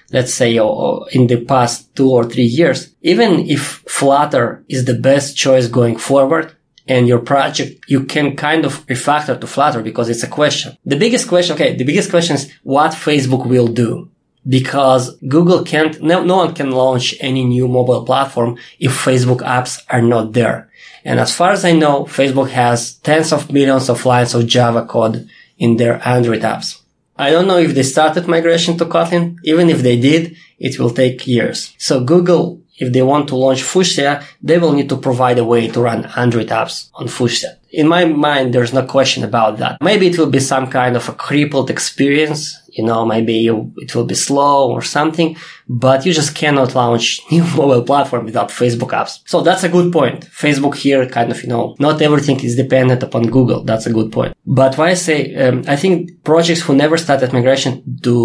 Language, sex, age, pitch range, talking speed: English, male, 20-39, 125-155 Hz, 200 wpm